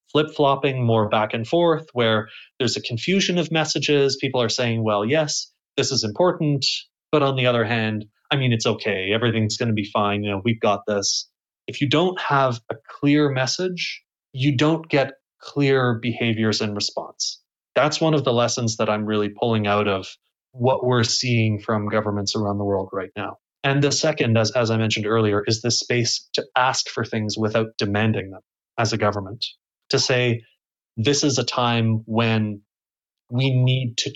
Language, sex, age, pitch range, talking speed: English, male, 30-49, 110-135 Hz, 185 wpm